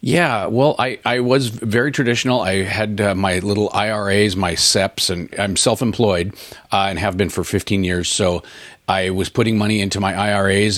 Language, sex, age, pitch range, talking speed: English, male, 40-59, 95-115 Hz, 185 wpm